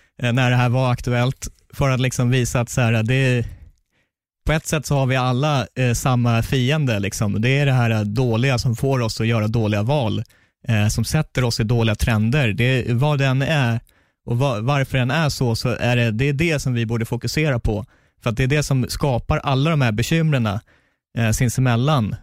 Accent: native